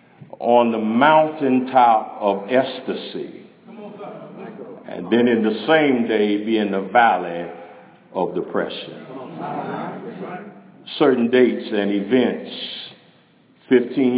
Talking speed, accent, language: 95 wpm, American, English